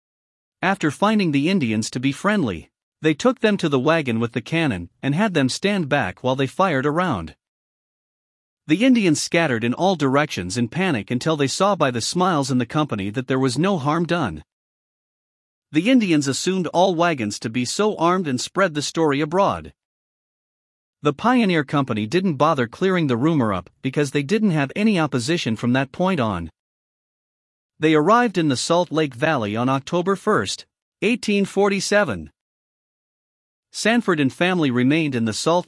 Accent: American